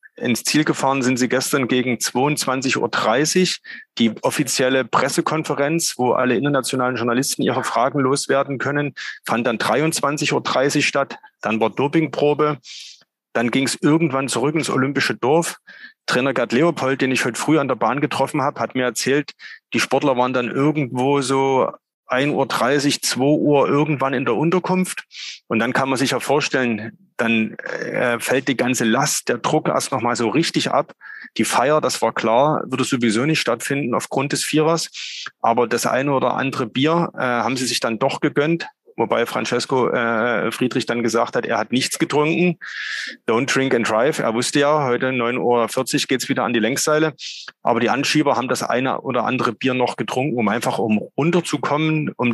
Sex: male